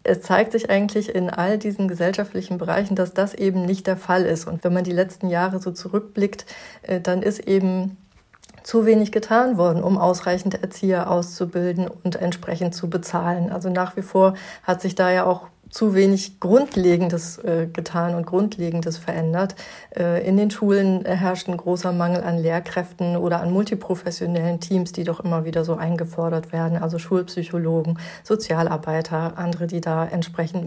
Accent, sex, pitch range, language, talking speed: German, female, 175-195 Hz, German, 160 wpm